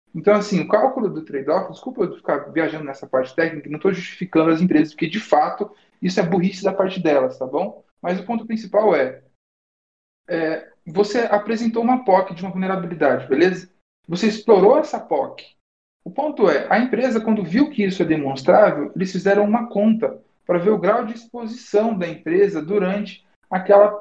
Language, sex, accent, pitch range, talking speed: Portuguese, male, Brazilian, 160-210 Hz, 180 wpm